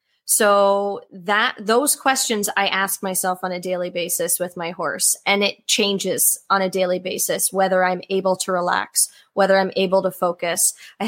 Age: 20-39